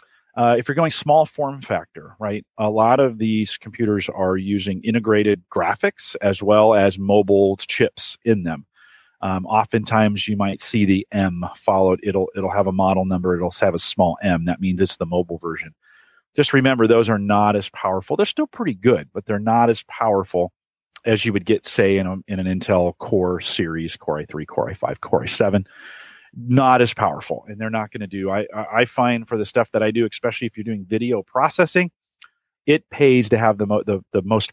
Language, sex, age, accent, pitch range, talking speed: English, male, 40-59, American, 95-115 Hz, 200 wpm